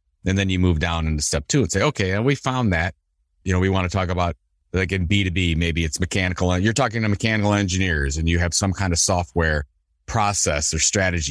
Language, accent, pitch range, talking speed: English, American, 85-115 Hz, 225 wpm